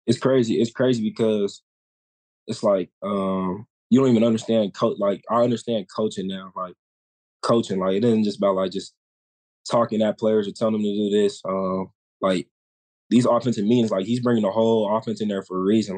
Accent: American